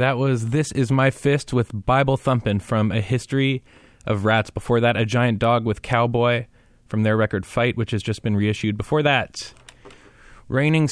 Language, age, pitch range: Japanese, 20-39, 105-130 Hz